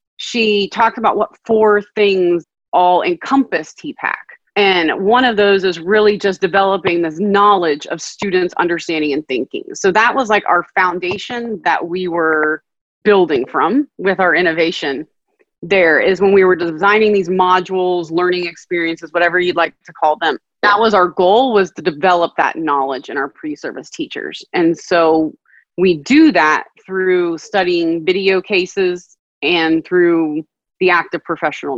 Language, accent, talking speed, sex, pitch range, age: English, American, 155 wpm, female, 175-215 Hz, 30-49